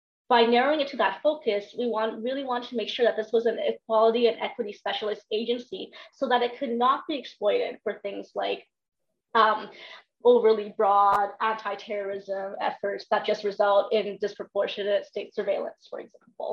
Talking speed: 165 wpm